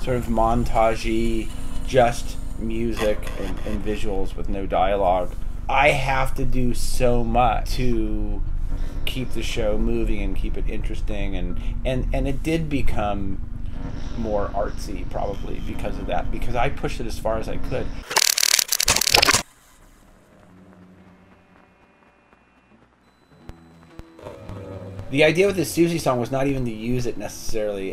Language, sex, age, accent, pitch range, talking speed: English, male, 30-49, American, 95-120 Hz, 130 wpm